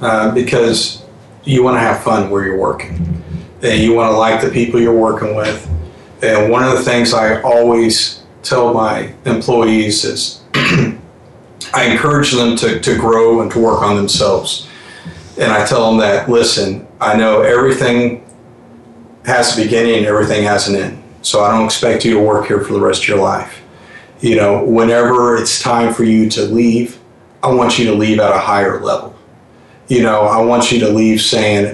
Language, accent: English, American